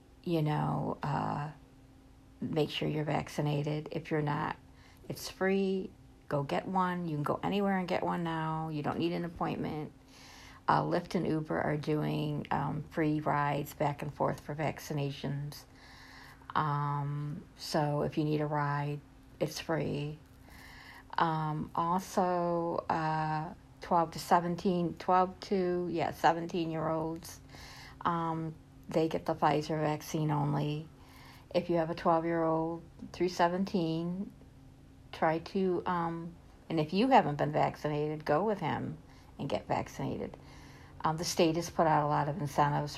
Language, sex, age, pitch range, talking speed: English, female, 50-69, 145-170 Hz, 140 wpm